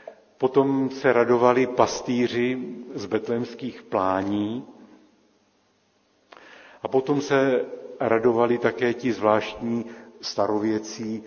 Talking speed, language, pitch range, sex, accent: 80 wpm, Czech, 110-130 Hz, male, native